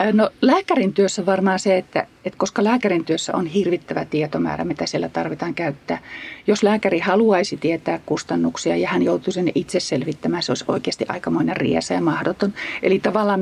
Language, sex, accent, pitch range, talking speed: Finnish, female, native, 165-205 Hz, 165 wpm